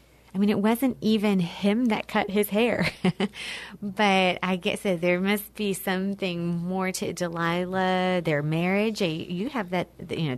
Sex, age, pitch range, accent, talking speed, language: female, 30-49, 170-205 Hz, American, 155 wpm, English